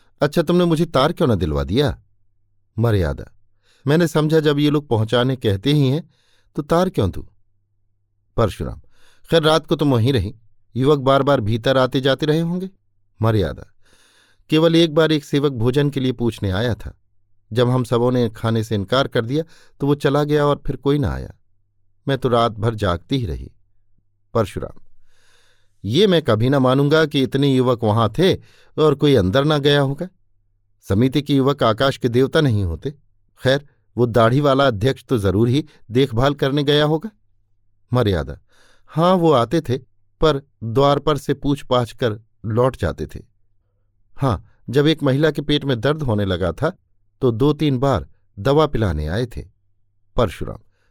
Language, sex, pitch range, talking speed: Hindi, male, 100-145 Hz, 170 wpm